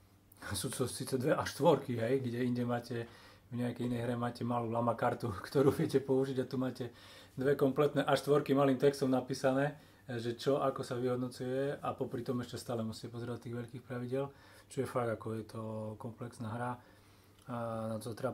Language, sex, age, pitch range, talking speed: Slovak, male, 30-49, 115-135 Hz, 185 wpm